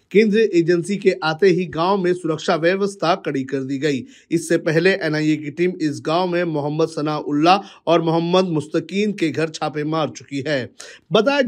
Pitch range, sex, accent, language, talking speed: 155-195 Hz, male, native, Hindi, 175 wpm